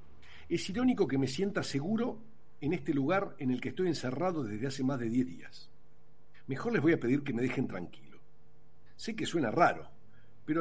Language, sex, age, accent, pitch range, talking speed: Spanish, male, 50-69, Argentinian, 120-170 Hz, 190 wpm